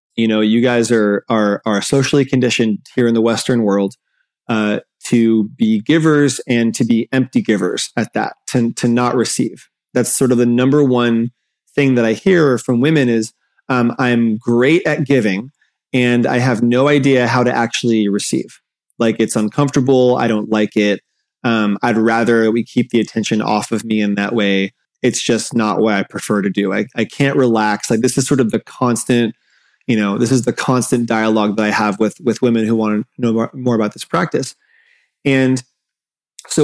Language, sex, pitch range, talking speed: English, male, 115-145 Hz, 195 wpm